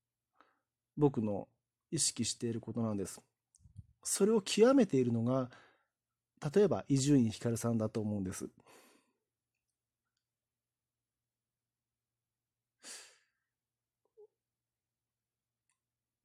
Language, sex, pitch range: Japanese, male, 120-165 Hz